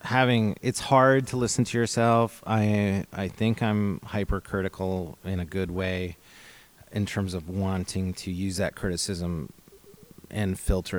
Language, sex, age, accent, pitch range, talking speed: English, male, 30-49, American, 85-105 Hz, 140 wpm